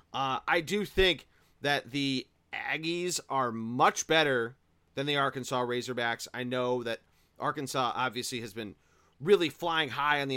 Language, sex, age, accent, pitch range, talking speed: English, male, 30-49, American, 125-175 Hz, 150 wpm